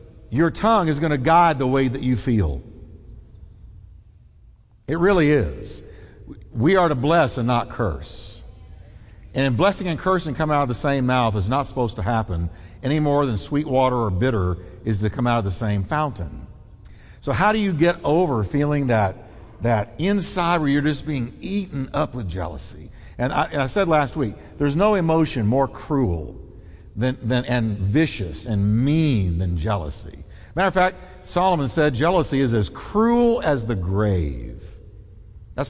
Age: 50-69